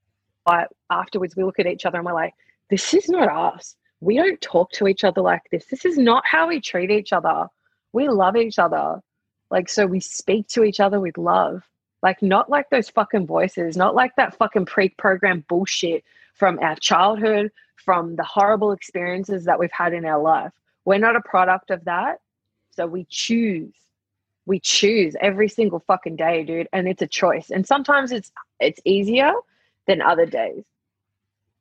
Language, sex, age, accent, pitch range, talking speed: English, female, 20-39, Australian, 155-210 Hz, 180 wpm